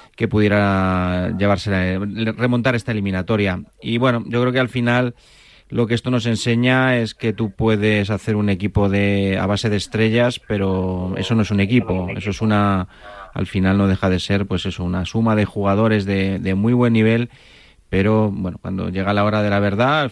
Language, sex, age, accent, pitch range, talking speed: Spanish, male, 30-49, Spanish, 95-115 Hz, 200 wpm